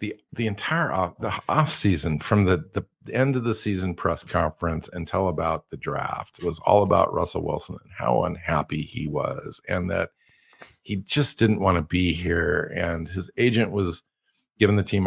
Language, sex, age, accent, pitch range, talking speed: English, male, 50-69, American, 85-105 Hz, 185 wpm